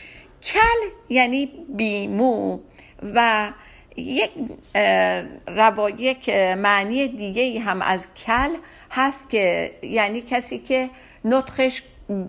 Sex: female